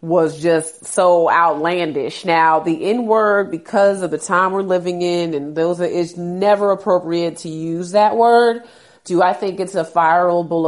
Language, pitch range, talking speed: English, 170-210 Hz, 165 wpm